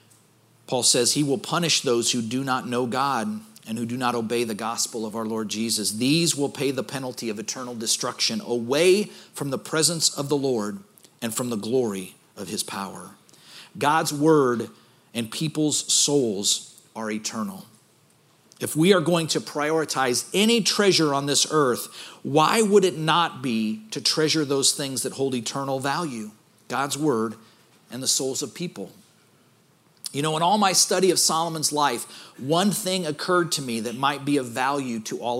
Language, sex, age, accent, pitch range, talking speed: English, male, 40-59, American, 120-160 Hz, 175 wpm